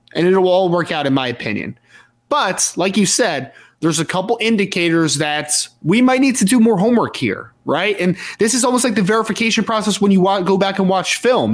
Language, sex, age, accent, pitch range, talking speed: English, male, 20-39, American, 160-210 Hz, 220 wpm